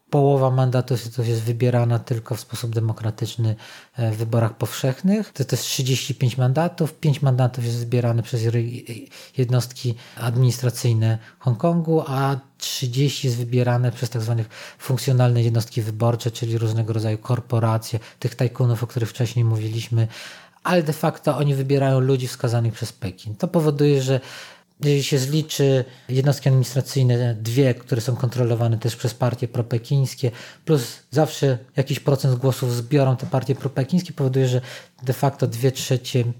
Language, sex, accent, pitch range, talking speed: Polish, male, native, 120-145 Hz, 135 wpm